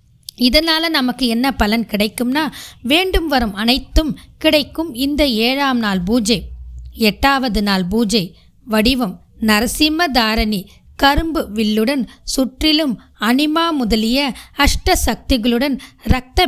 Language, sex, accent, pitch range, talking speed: Tamil, female, native, 220-285 Hz, 85 wpm